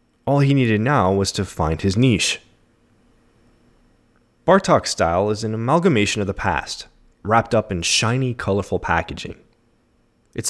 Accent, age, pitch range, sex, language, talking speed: American, 20-39, 95-130 Hz, male, English, 135 wpm